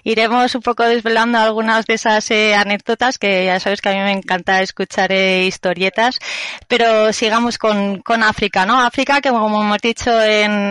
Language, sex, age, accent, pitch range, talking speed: Spanish, female, 20-39, Spanish, 190-225 Hz, 180 wpm